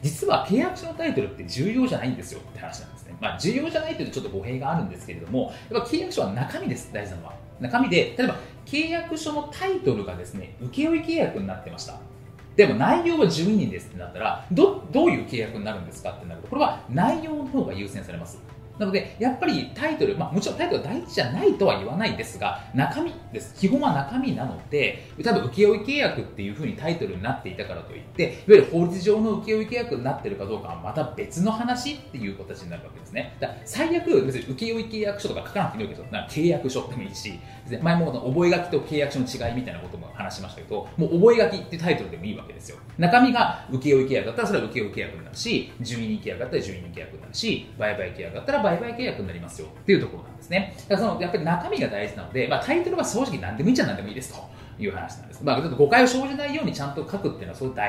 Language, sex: Japanese, male